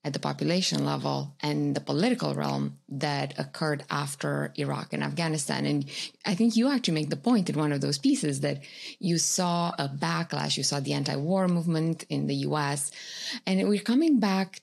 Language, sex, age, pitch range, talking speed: English, female, 20-39, 145-205 Hz, 180 wpm